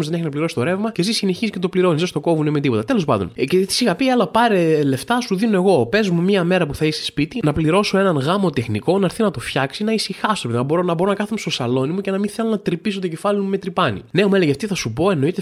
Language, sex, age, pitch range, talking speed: Greek, male, 20-39, 130-205 Hz, 300 wpm